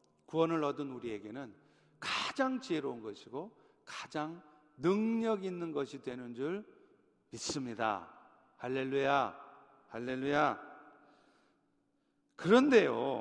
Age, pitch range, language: 50-69, 135-195 Hz, Korean